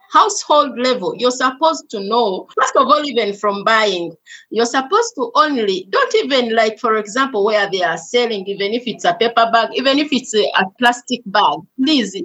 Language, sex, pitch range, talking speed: English, female, 210-270 Hz, 190 wpm